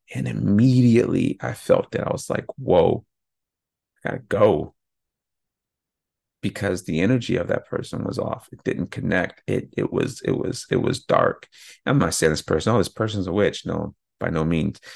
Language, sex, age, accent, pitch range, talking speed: English, male, 30-49, American, 90-110 Hz, 180 wpm